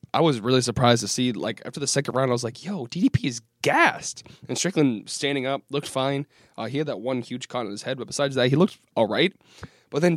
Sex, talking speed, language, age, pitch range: male, 255 wpm, English, 20-39, 120-150 Hz